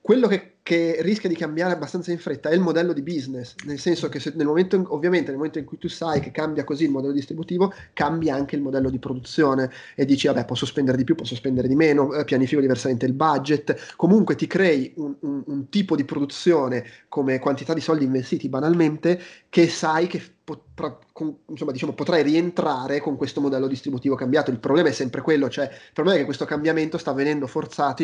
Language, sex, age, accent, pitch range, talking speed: Italian, male, 30-49, native, 135-160 Hz, 205 wpm